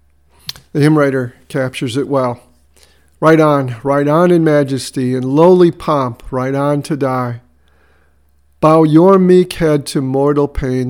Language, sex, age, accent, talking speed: English, male, 50-69, American, 145 wpm